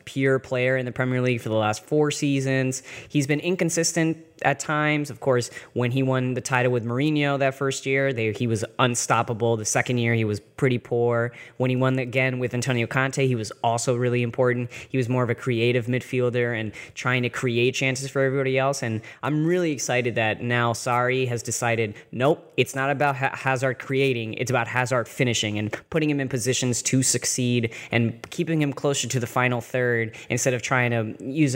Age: 10-29